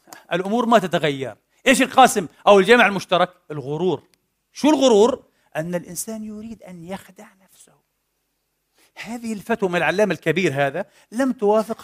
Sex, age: male, 40-59